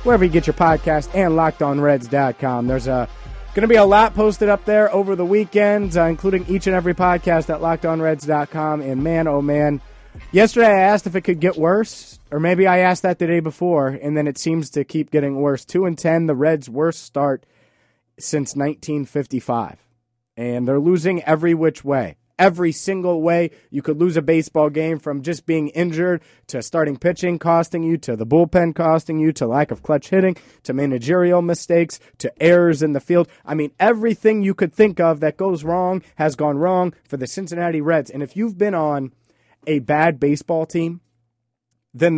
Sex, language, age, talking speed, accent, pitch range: male, English, 30-49, 190 wpm, American, 140-180 Hz